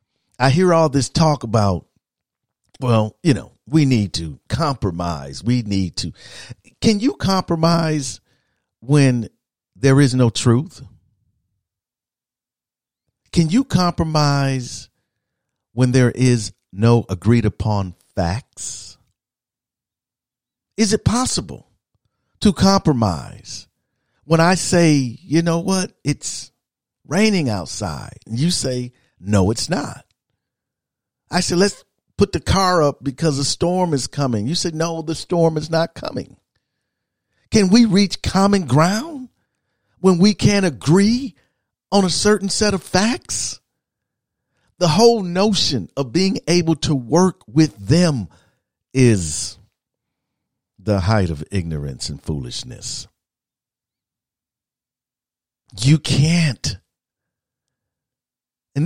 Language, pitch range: English, 115-170 Hz